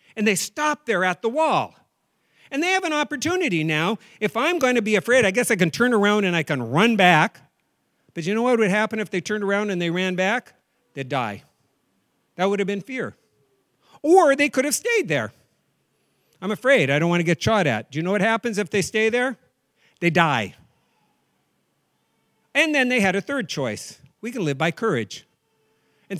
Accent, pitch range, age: American, 155-230 Hz, 50-69